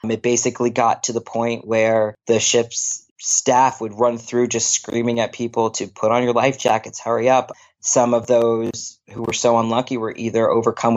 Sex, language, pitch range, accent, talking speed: male, English, 110-120 Hz, American, 190 wpm